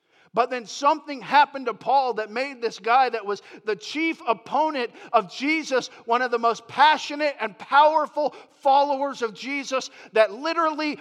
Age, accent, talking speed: 50-69, American, 160 wpm